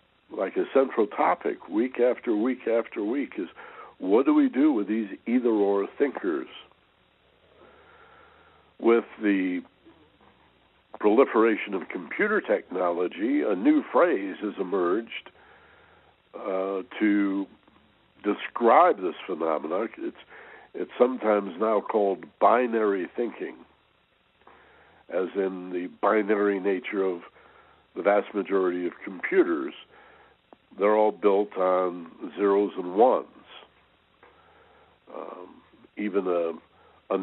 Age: 60-79